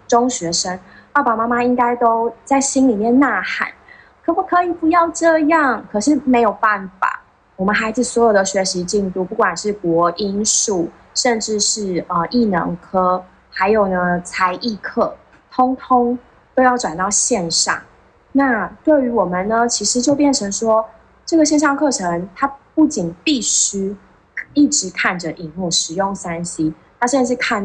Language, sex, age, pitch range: Chinese, female, 20-39, 180-235 Hz